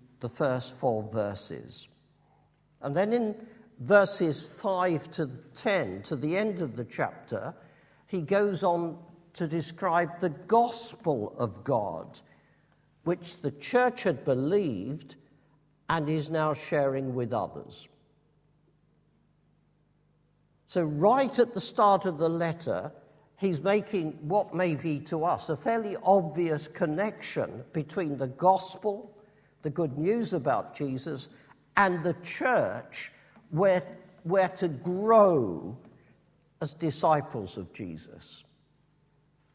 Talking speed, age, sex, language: 115 wpm, 50-69, male, English